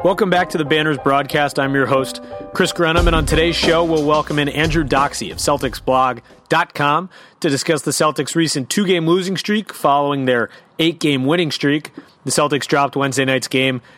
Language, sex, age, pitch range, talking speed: English, male, 30-49, 135-160 Hz, 185 wpm